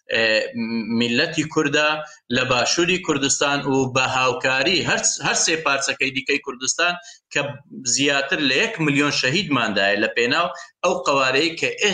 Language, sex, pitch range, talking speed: Turkish, male, 120-155 Hz, 115 wpm